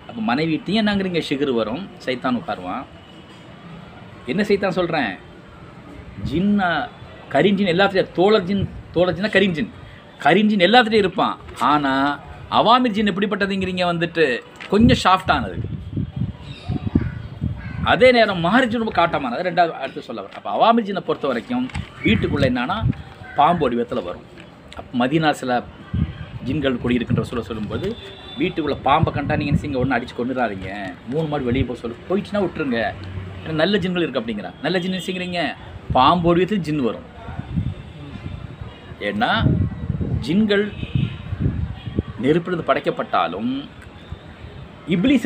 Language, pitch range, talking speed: Tamil, 125-200 Hz, 90 wpm